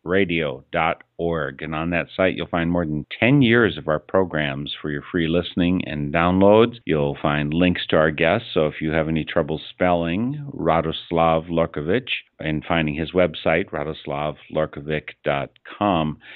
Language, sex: English, male